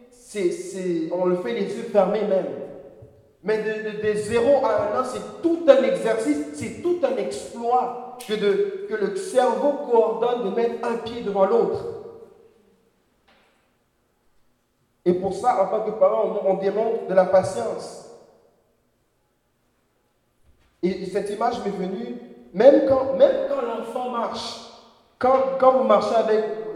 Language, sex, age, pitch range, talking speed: French, male, 50-69, 200-275 Hz, 135 wpm